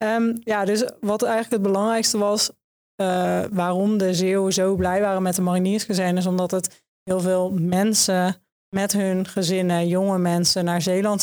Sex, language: female, Dutch